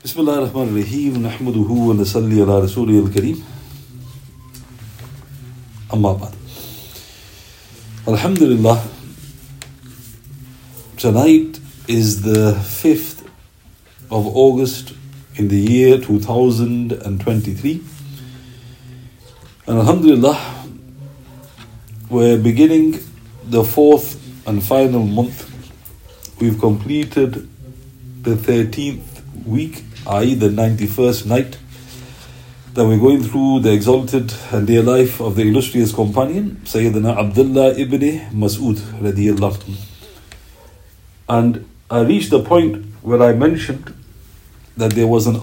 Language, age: English, 50-69